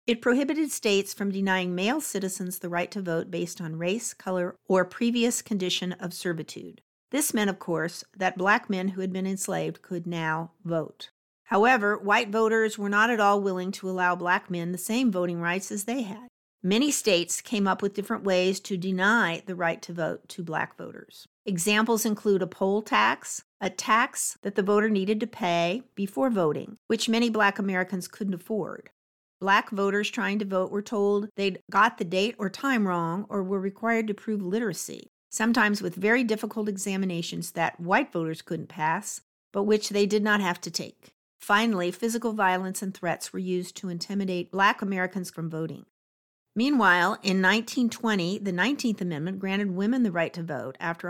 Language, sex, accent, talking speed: English, female, American, 180 wpm